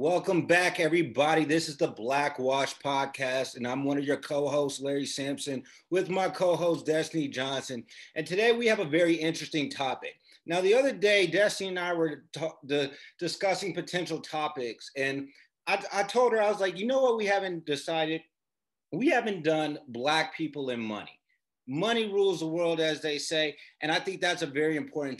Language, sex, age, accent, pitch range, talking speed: English, male, 30-49, American, 140-175 Hz, 185 wpm